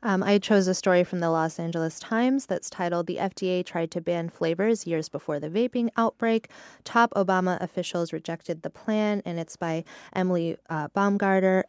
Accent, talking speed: American, 180 wpm